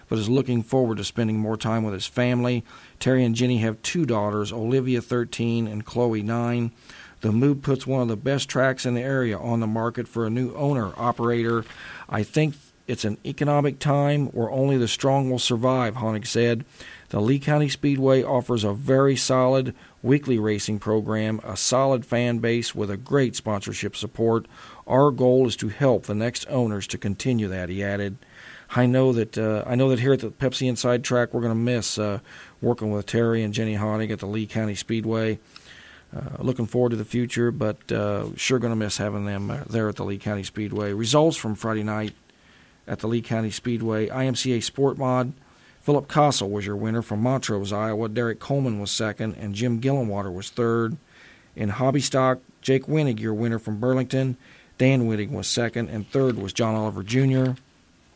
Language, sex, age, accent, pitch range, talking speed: English, male, 40-59, American, 110-130 Hz, 190 wpm